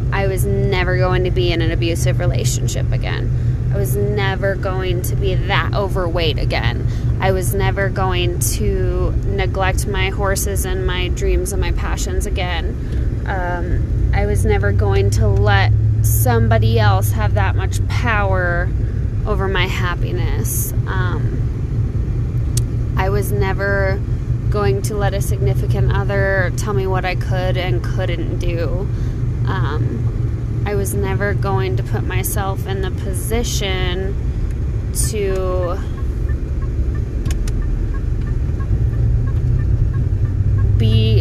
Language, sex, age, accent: English, female, 20-39, American